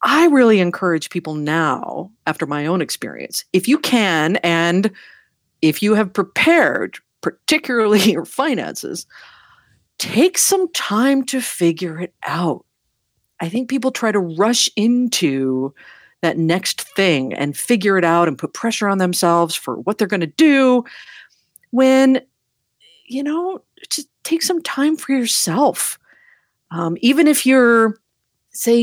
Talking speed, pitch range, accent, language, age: 135 wpm, 165-260 Hz, American, English, 40-59